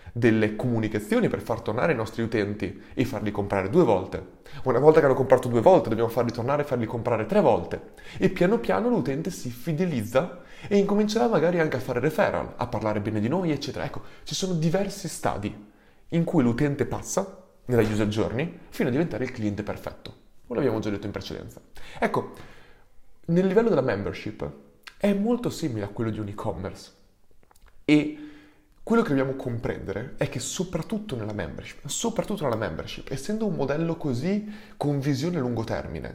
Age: 30-49